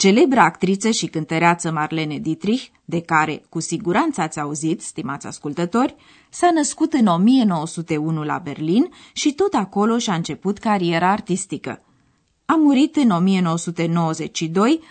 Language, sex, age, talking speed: Romanian, female, 20-39, 125 wpm